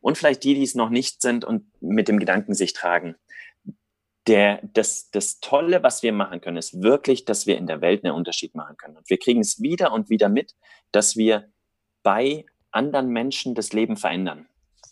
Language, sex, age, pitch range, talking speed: German, male, 30-49, 105-140 Hz, 195 wpm